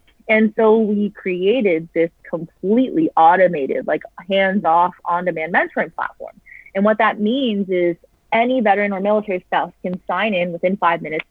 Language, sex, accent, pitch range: English, female, American, 175-220 Hz